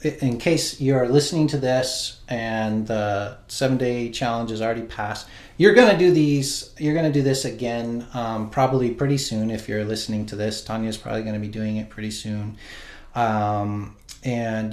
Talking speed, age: 185 wpm, 30-49